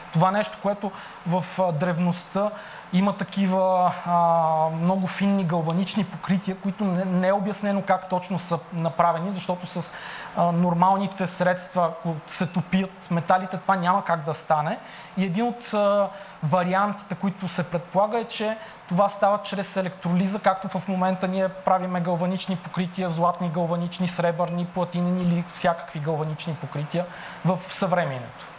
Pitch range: 175-200 Hz